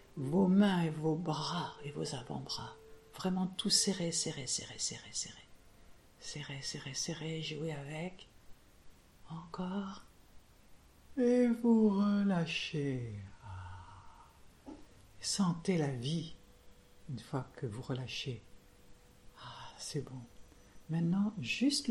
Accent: French